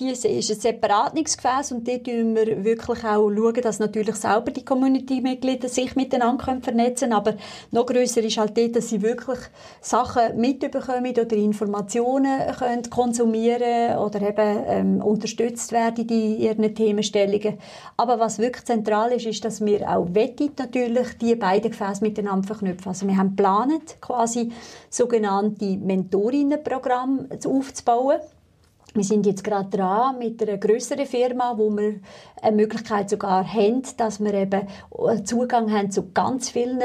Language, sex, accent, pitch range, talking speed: German, female, Swiss, 210-250 Hz, 145 wpm